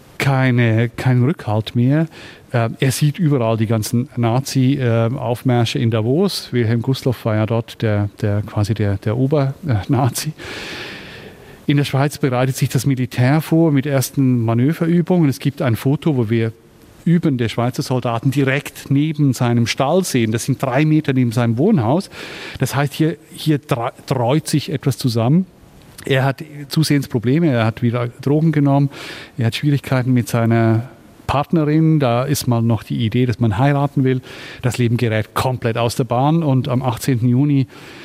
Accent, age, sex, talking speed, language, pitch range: German, 40-59, male, 160 wpm, German, 120-145 Hz